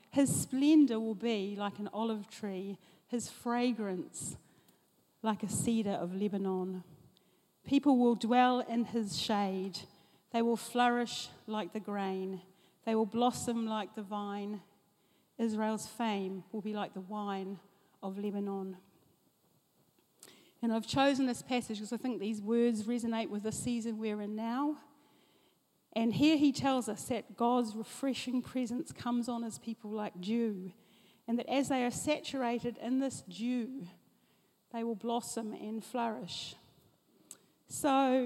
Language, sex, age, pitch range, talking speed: English, female, 40-59, 210-245 Hz, 140 wpm